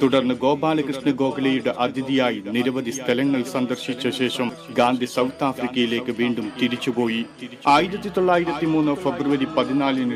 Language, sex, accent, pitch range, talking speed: Malayalam, male, native, 125-145 Hz, 105 wpm